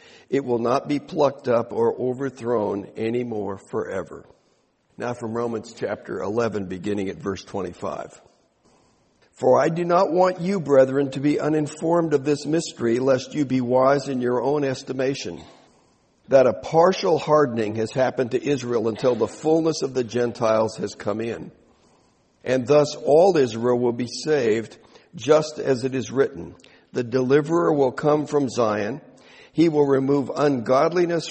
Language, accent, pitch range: English, American, 120-150 Hz